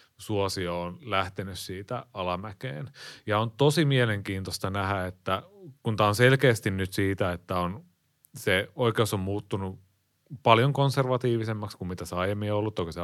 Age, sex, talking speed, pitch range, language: 30-49, male, 145 wpm, 95-120 Hz, Finnish